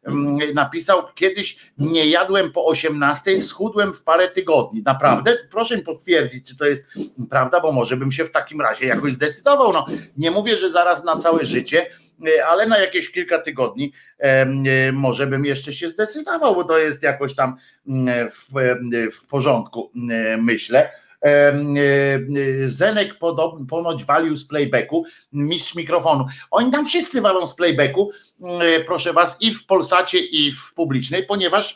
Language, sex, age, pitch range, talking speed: Polish, male, 50-69, 135-185 Hz, 145 wpm